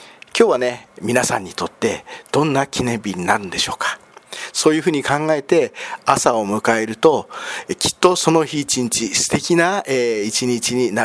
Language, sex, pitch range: Japanese, male, 115-185 Hz